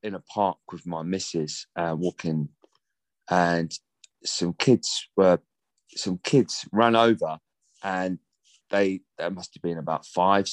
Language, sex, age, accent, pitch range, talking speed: English, male, 30-49, British, 100-130 Hz, 135 wpm